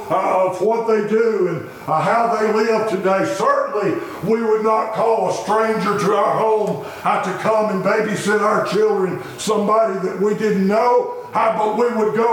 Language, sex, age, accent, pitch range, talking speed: English, male, 60-79, American, 220-255 Hz, 185 wpm